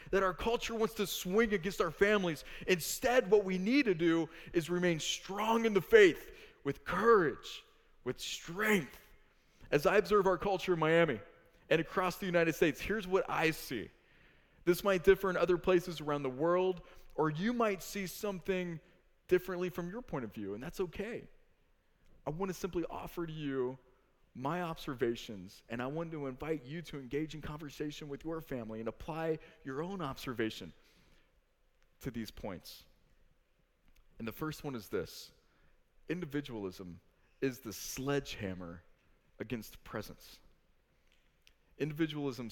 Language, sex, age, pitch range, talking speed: English, male, 20-39, 130-185 Hz, 150 wpm